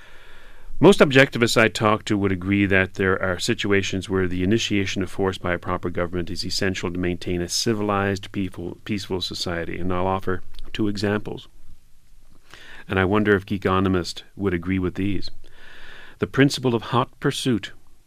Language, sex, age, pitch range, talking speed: English, male, 40-59, 95-125 Hz, 155 wpm